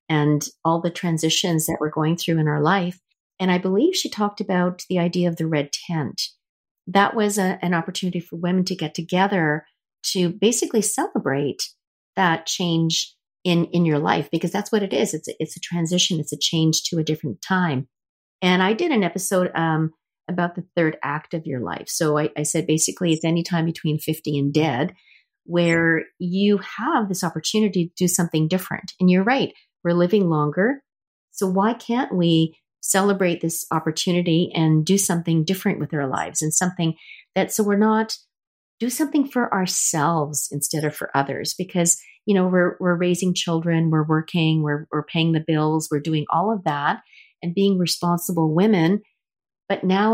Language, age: English, 40-59